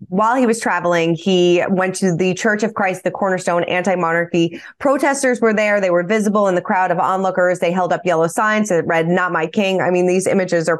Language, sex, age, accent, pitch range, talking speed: English, female, 20-39, American, 175-210 Hz, 220 wpm